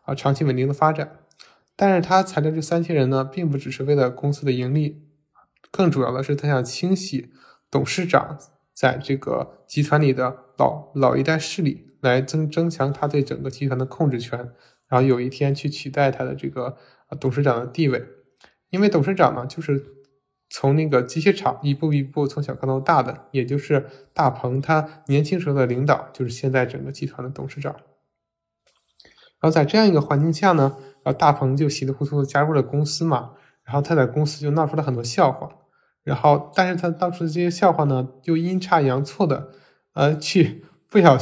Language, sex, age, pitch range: Chinese, male, 20-39, 130-155 Hz